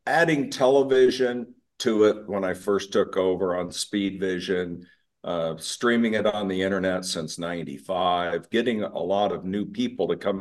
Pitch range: 95-120 Hz